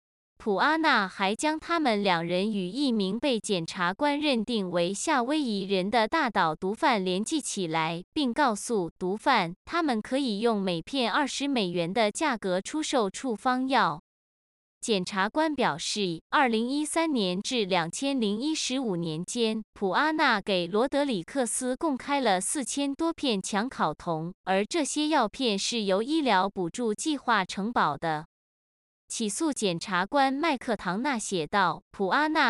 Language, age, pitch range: Chinese, 20-39, 190-275 Hz